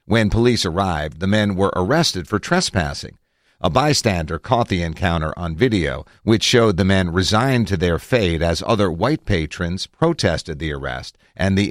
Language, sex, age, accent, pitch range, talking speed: English, male, 50-69, American, 90-115 Hz, 170 wpm